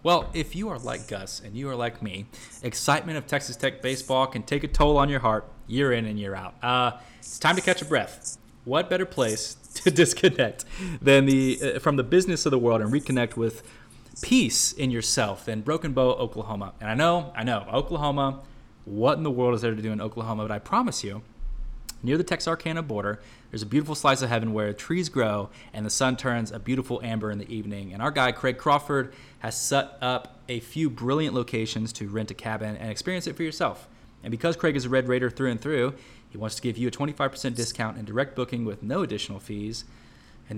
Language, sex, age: English, male, 20-39